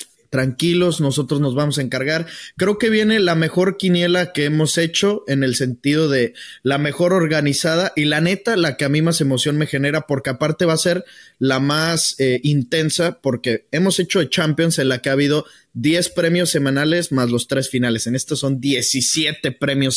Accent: Mexican